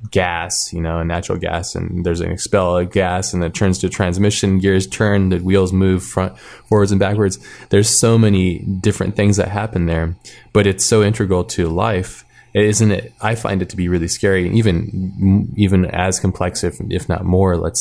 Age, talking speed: 20-39, 200 wpm